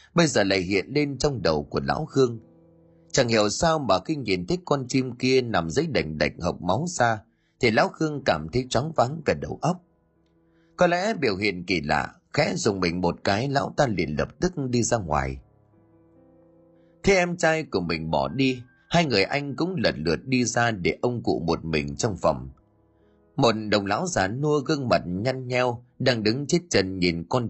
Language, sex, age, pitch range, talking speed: Vietnamese, male, 30-49, 95-145 Hz, 205 wpm